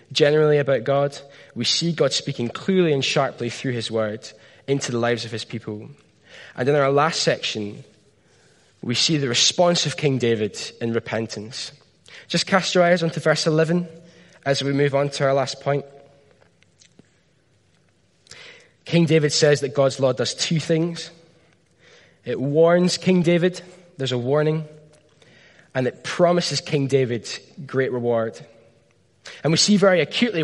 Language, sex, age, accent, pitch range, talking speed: English, male, 10-29, British, 125-170 Hz, 150 wpm